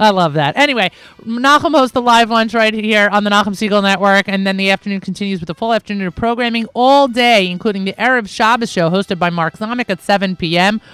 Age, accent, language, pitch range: 30-49, American, English, 175-225 Hz